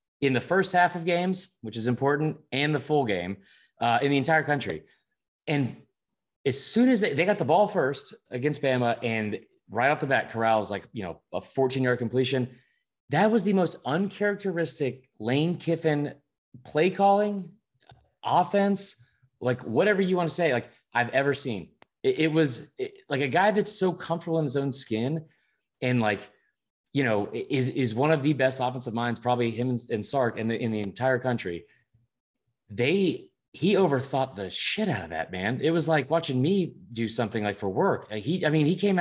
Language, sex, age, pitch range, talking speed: English, male, 30-49, 120-165 Hz, 190 wpm